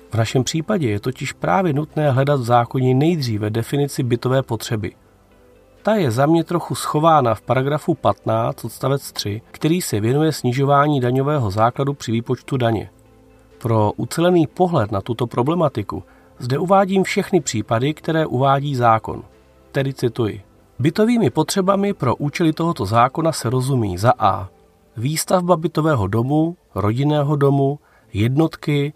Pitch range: 110-155 Hz